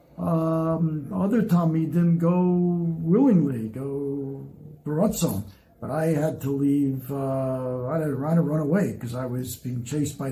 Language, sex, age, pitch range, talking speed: English, male, 60-79, 135-185 Hz, 150 wpm